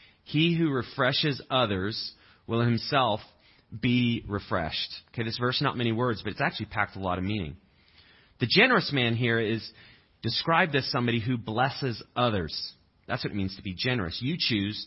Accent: American